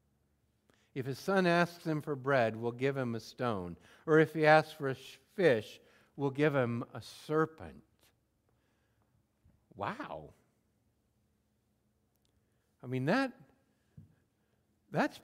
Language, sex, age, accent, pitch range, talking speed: English, male, 60-79, American, 110-155 Hz, 115 wpm